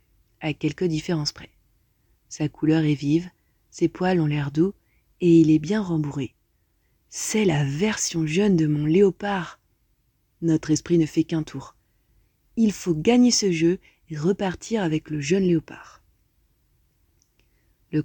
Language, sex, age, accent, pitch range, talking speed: French, female, 30-49, French, 150-185 Hz, 145 wpm